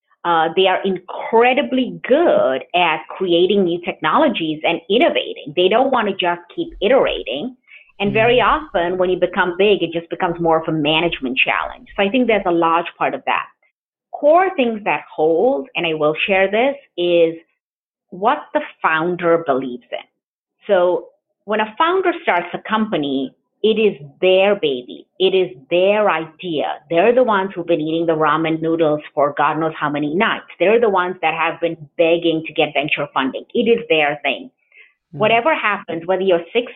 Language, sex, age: English, female, 30-49